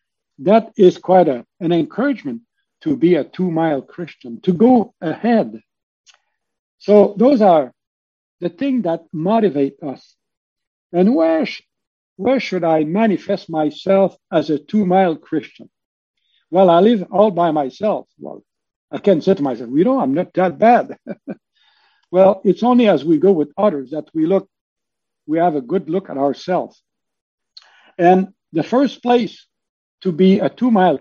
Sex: male